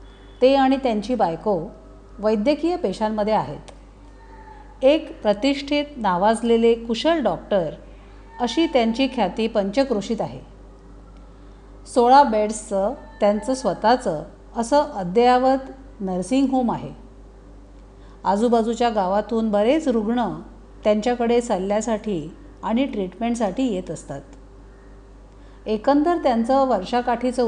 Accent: native